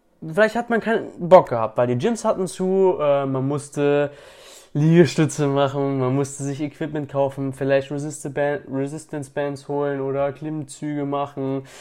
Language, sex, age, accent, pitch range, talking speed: German, male, 20-39, German, 130-180 Hz, 140 wpm